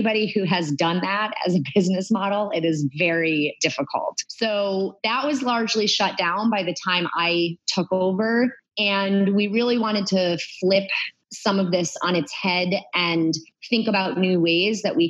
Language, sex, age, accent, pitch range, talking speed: English, female, 30-49, American, 165-200 Hz, 175 wpm